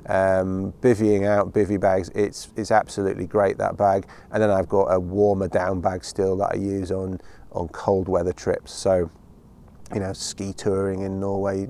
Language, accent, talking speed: English, British, 180 wpm